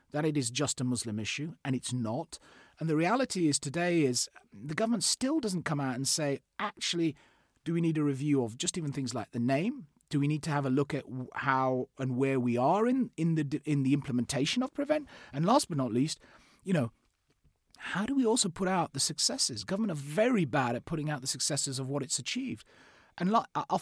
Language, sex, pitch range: English, male, 130-175 Hz